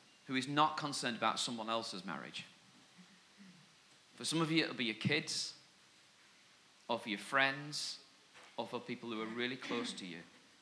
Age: 40-59